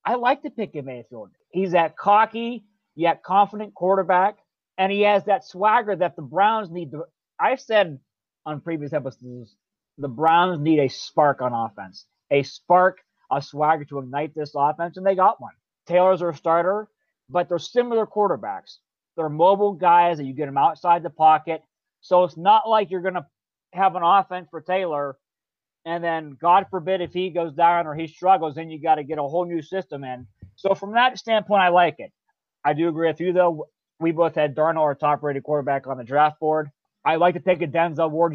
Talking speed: 195 wpm